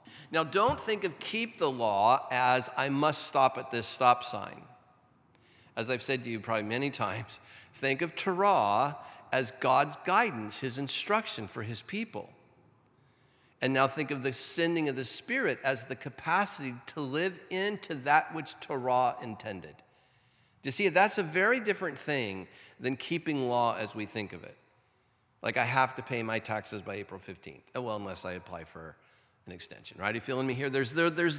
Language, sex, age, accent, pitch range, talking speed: English, male, 50-69, American, 115-160 Hz, 180 wpm